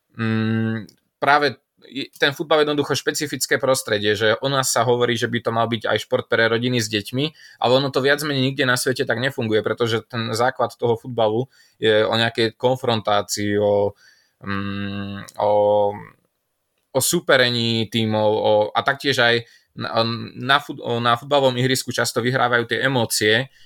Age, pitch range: 20-39, 110-130 Hz